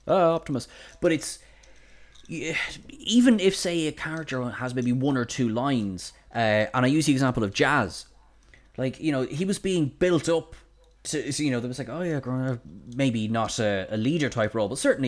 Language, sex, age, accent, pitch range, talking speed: English, male, 20-39, Irish, 115-155 Hz, 200 wpm